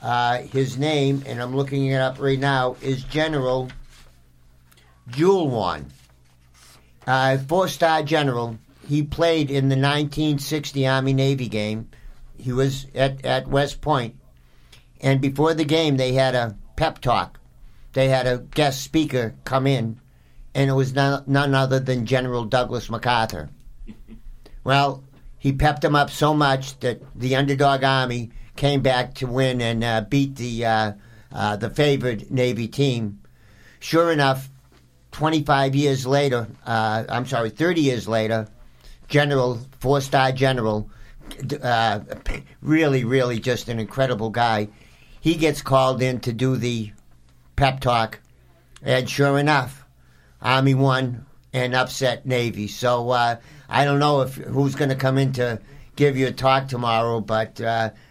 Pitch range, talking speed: 115-140 Hz, 140 wpm